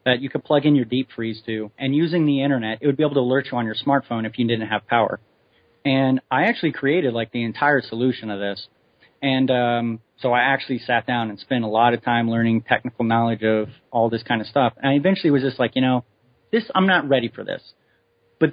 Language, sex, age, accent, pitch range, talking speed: English, male, 30-49, American, 120-165 Hz, 245 wpm